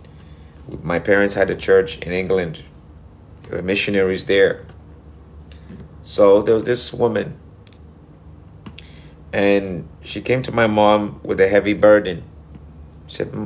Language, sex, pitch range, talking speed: English, male, 80-110 Hz, 120 wpm